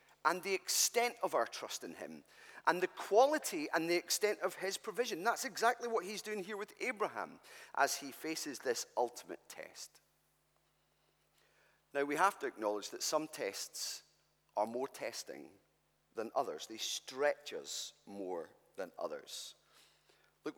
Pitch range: 130-205 Hz